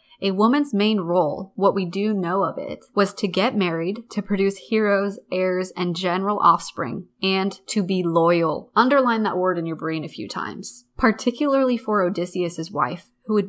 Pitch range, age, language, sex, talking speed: 180-220 Hz, 20-39, English, female, 180 wpm